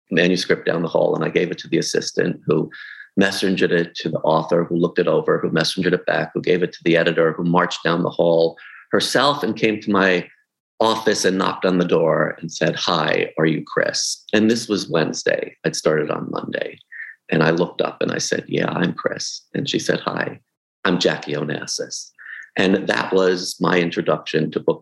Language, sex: English, male